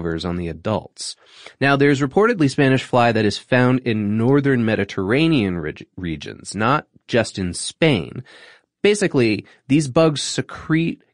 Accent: American